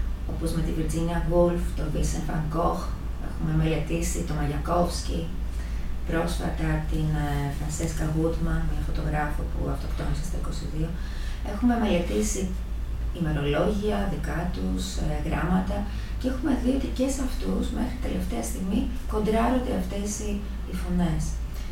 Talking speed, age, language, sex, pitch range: 120 wpm, 30-49, Greek, female, 150-190 Hz